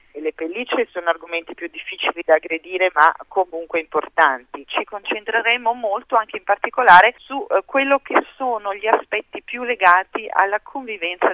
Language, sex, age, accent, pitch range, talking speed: Italian, female, 40-59, native, 170-230 Hz, 145 wpm